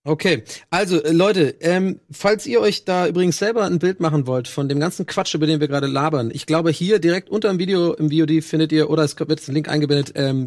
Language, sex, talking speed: German, male, 245 wpm